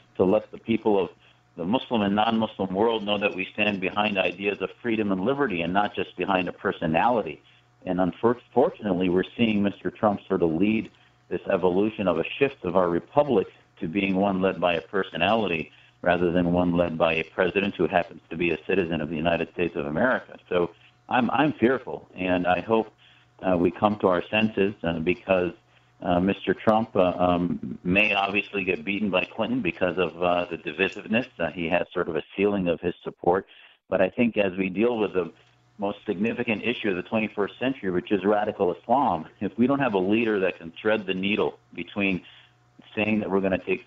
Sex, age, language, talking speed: male, 50-69, English, 200 wpm